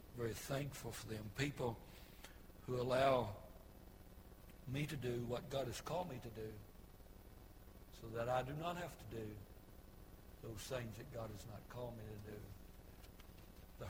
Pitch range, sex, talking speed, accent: 105-130 Hz, male, 155 wpm, American